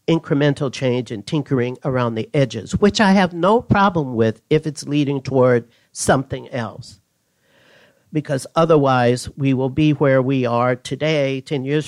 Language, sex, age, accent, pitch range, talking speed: English, male, 50-69, American, 125-165 Hz, 150 wpm